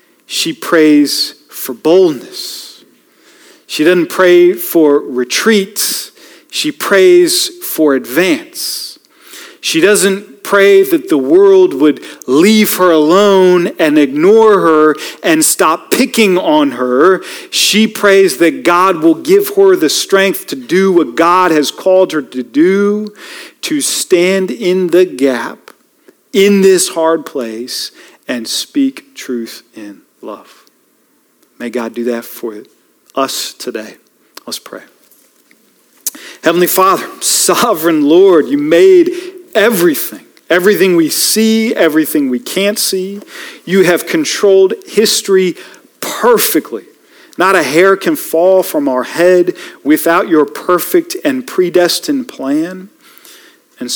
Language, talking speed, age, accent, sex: English, 120 wpm, 40-59, American, male